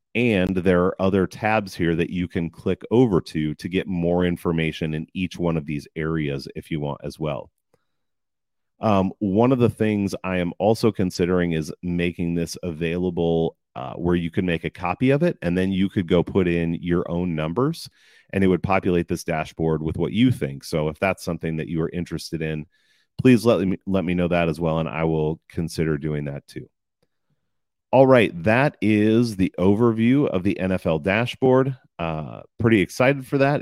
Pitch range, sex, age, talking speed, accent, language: 85-105 Hz, male, 30-49, 195 wpm, American, English